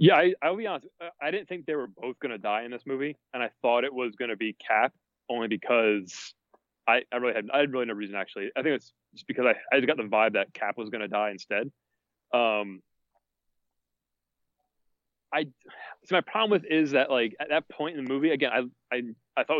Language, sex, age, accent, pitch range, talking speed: English, male, 30-49, American, 115-150 Hz, 225 wpm